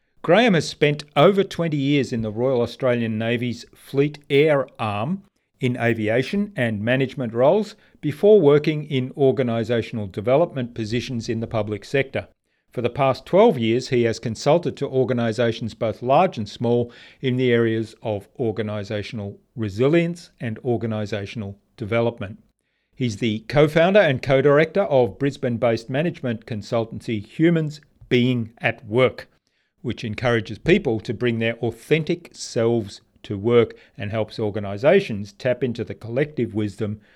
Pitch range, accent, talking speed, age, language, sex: 110-135 Hz, Australian, 135 wpm, 40-59, English, male